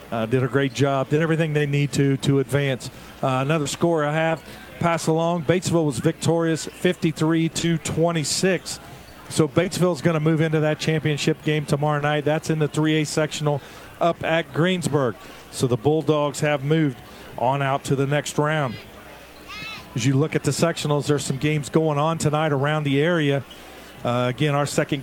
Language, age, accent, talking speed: English, 40-59, American, 175 wpm